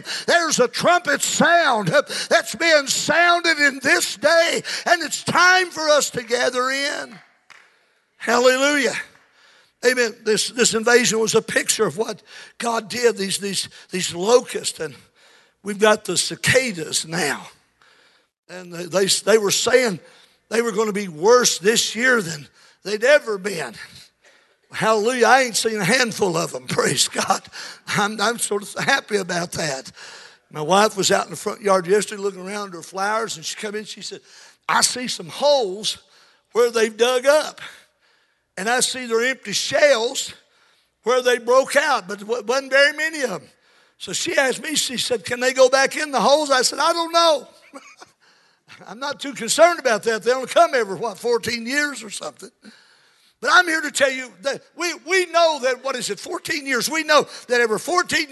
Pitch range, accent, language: 215-300 Hz, American, English